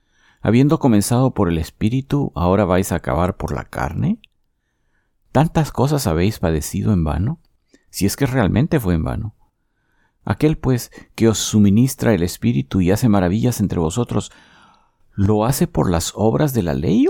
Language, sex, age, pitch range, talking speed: Spanish, male, 50-69, 85-115 Hz, 160 wpm